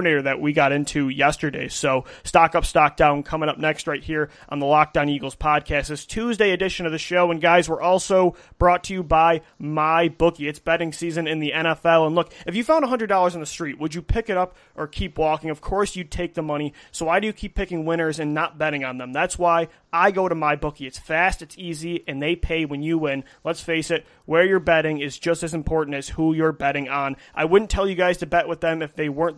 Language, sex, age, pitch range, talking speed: English, male, 30-49, 150-175 Hz, 250 wpm